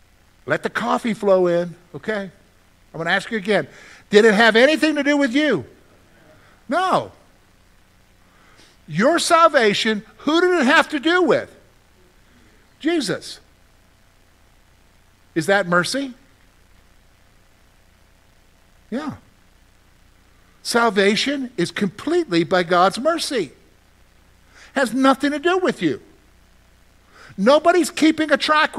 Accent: American